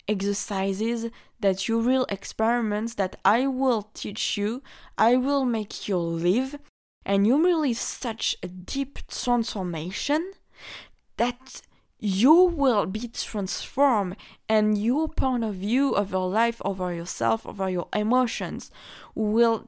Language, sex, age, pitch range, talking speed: English, female, 20-39, 185-235 Hz, 125 wpm